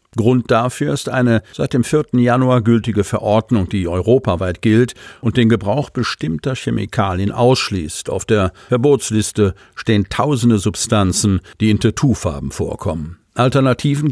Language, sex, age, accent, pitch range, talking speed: German, male, 50-69, German, 95-125 Hz, 130 wpm